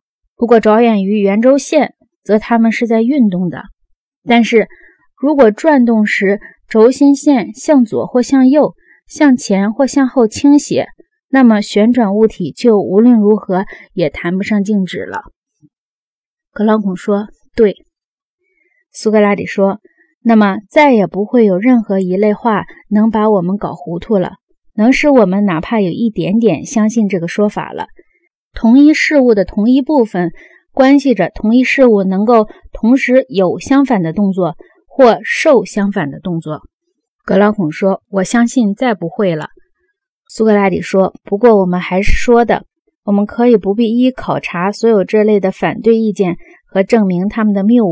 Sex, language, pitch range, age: female, Chinese, 200-265 Hz, 20-39